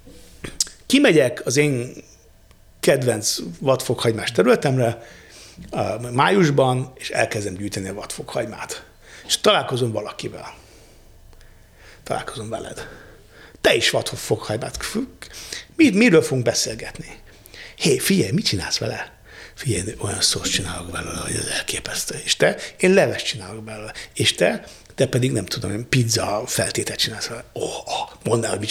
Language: Hungarian